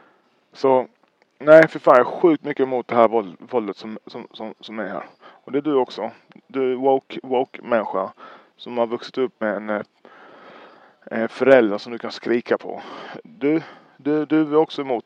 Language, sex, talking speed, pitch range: Swedish, male, 185 wpm, 125-170 Hz